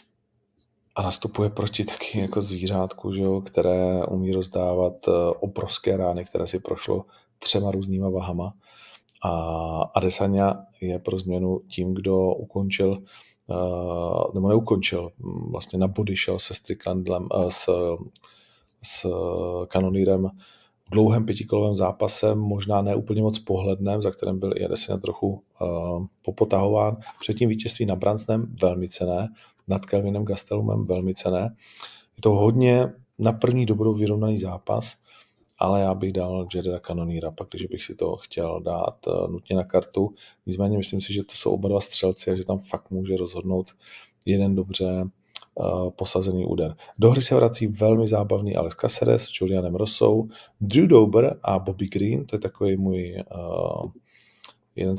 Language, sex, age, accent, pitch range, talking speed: Czech, male, 40-59, native, 90-105 Hz, 140 wpm